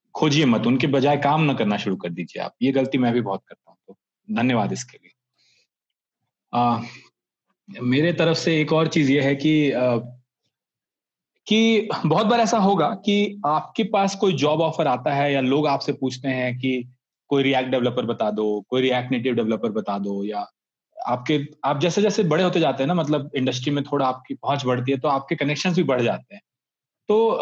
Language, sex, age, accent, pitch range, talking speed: Hindi, male, 30-49, native, 130-170 Hz, 195 wpm